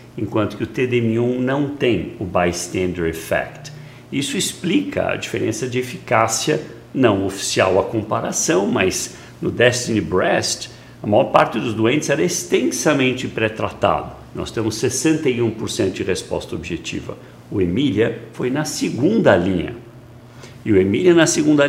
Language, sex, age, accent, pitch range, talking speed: Portuguese, male, 60-79, Brazilian, 100-130 Hz, 135 wpm